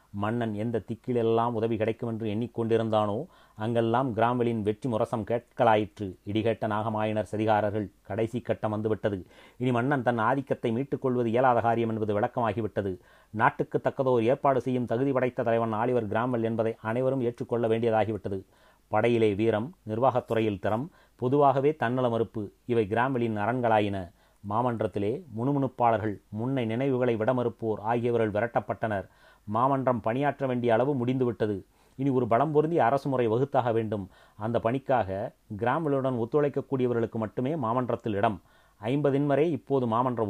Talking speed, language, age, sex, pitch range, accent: 120 wpm, Tamil, 30-49, male, 110-130 Hz, native